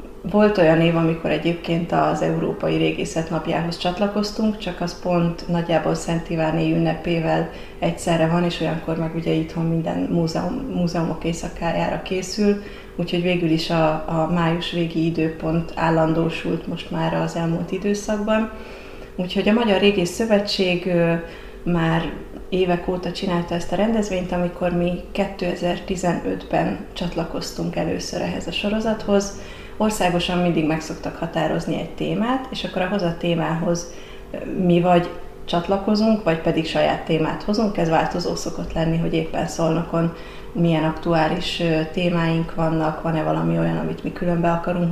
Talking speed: 135 wpm